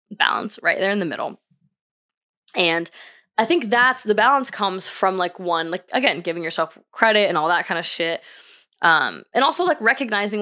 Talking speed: 185 wpm